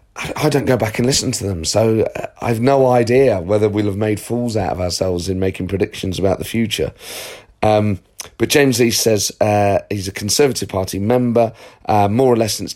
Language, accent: English, British